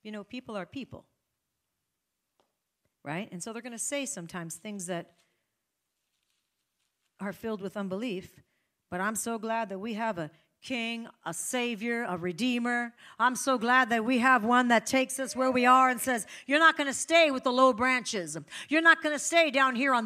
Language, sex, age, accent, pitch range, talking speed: English, female, 40-59, American, 200-275 Hz, 190 wpm